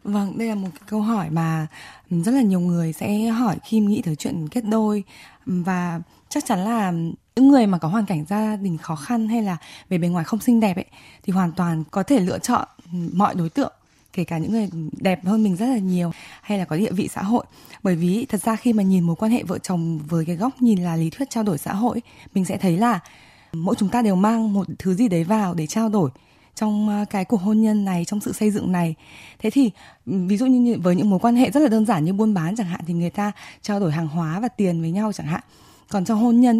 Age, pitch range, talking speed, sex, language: 20-39, 175-225 Hz, 255 wpm, female, Vietnamese